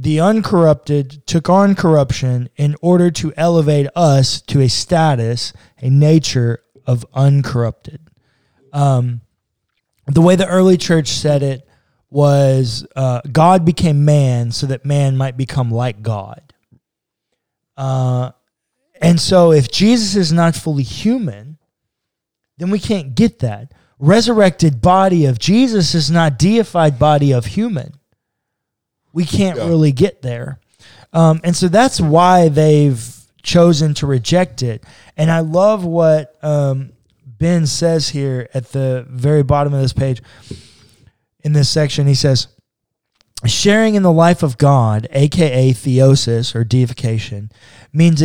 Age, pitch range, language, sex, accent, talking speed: 20-39, 125-170 Hz, English, male, American, 135 wpm